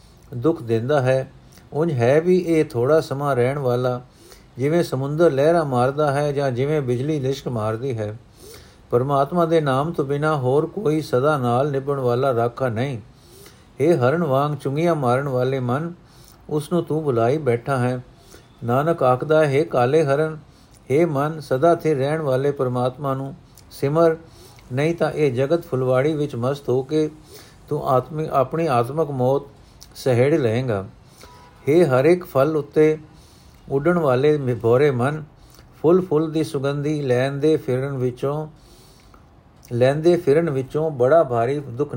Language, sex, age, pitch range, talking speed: Punjabi, male, 50-69, 125-155 Hz, 145 wpm